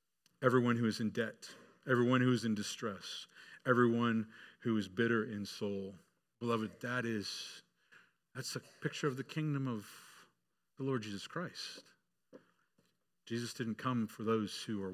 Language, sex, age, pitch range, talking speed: English, male, 40-59, 105-135 Hz, 145 wpm